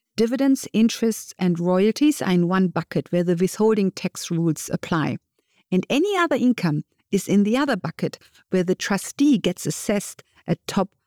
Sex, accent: female, German